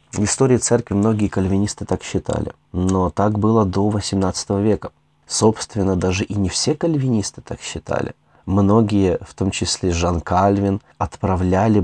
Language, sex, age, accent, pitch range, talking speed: Russian, male, 30-49, native, 90-110 Hz, 140 wpm